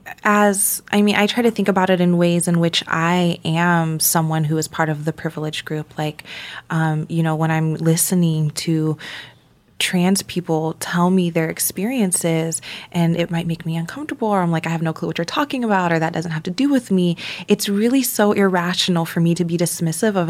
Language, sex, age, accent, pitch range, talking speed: English, female, 20-39, American, 165-195 Hz, 215 wpm